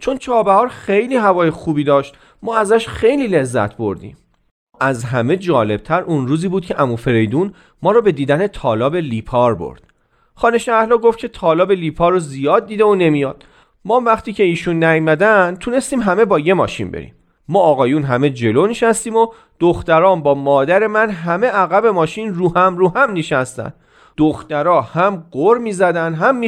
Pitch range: 140-210 Hz